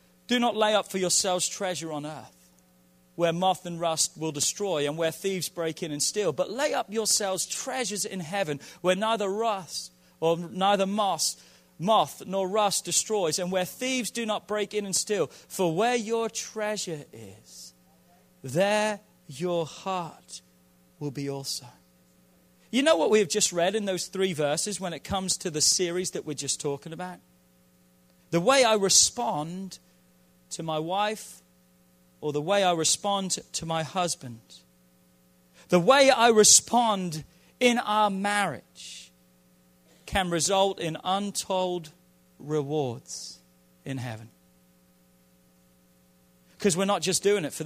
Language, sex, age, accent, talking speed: English, male, 40-59, British, 145 wpm